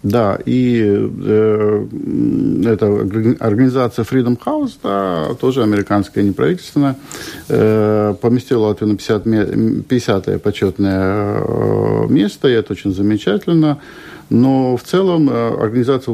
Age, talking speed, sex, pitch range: 50-69, 95 wpm, male, 95-120 Hz